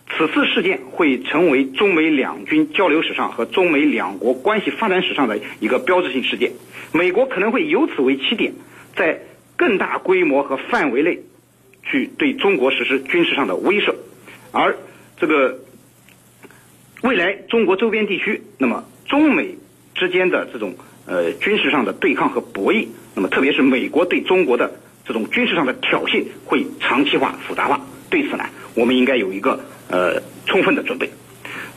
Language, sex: Chinese, male